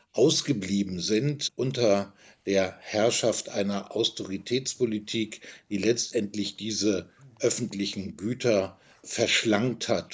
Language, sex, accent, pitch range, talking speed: German, male, German, 105-140 Hz, 85 wpm